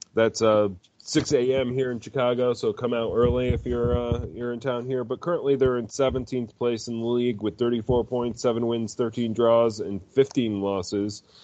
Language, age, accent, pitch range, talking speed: English, 30-49, American, 105-120 Hz, 195 wpm